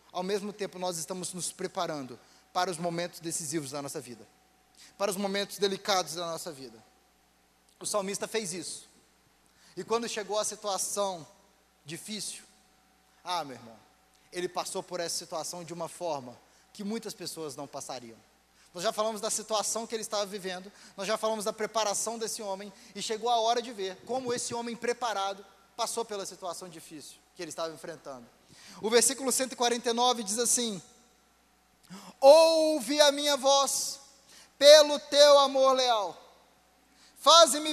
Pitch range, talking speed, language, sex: 175-250 Hz, 150 wpm, Portuguese, male